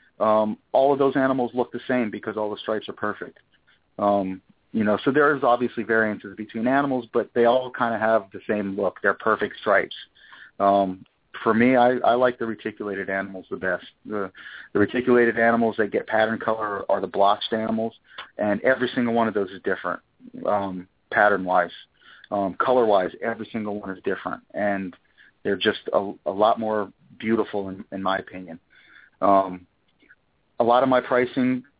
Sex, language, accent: male, English, American